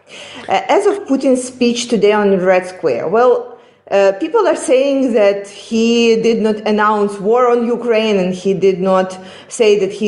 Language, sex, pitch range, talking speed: English, female, 205-255 Hz, 165 wpm